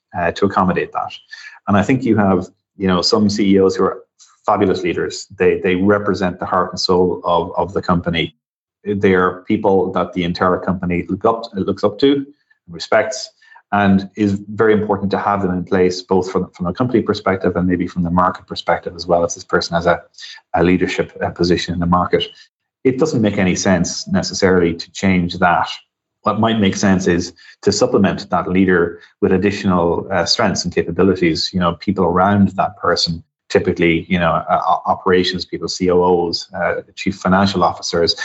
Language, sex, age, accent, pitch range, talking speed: English, male, 30-49, Irish, 90-105 Hz, 185 wpm